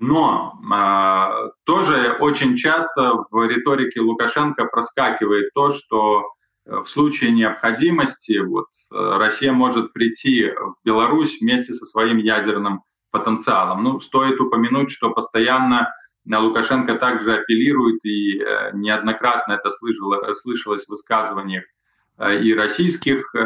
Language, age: Ukrainian, 20-39